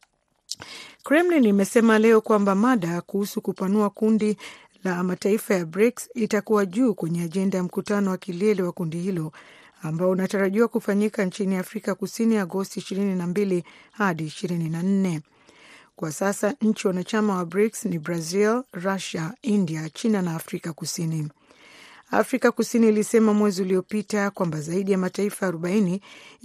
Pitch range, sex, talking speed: 180-215 Hz, female, 130 wpm